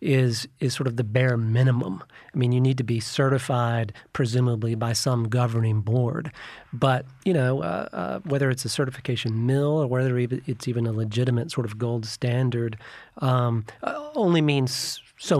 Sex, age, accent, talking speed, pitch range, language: male, 40-59, American, 170 wpm, 120-140 Hz, English